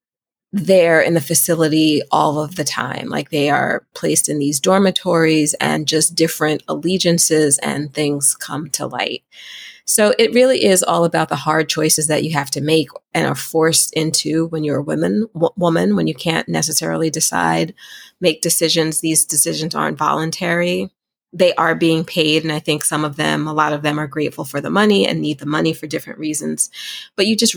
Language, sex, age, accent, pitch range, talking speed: English, female, 30-49, American, 150-170 Hz, 190 wpm